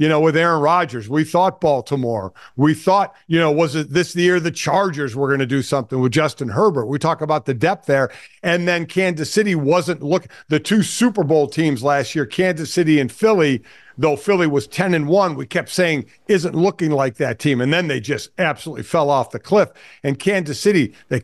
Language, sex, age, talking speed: English, male, 50-69, 225 wpm